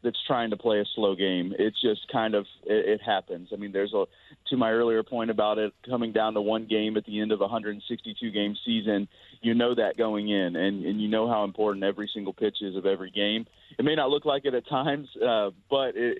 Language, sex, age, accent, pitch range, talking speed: English, male, 30-49, American, 100-120 Hz, 245 wpm